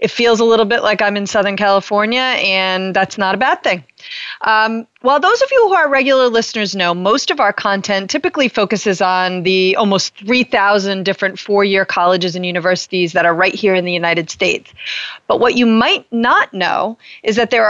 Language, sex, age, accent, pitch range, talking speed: English, female, 30-49, American, 190-245 Hz, 195 wpm